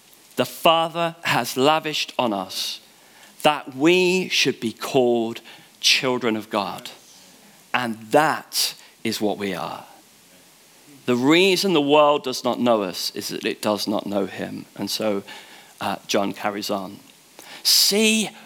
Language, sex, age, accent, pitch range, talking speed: English, male, 40-59, British, 110-140 Hz, 135 wpm